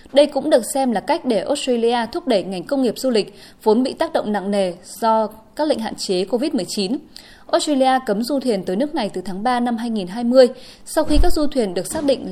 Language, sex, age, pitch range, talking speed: Vietnamese, female, 20-39, 205-270 Hz, 230 wpm